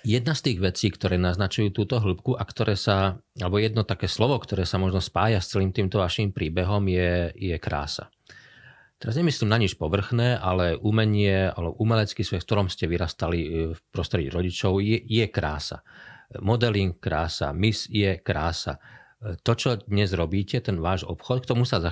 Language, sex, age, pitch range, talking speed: Slovak, male, 40-59, 85-105 Hz, 170 wpm